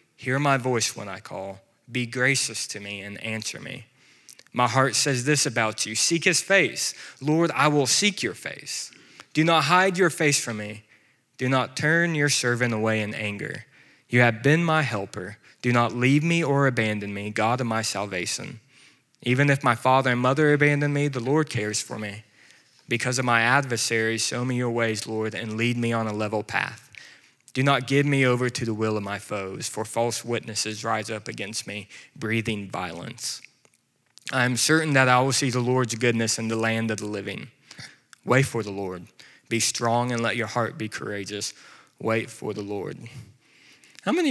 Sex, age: male, 20-39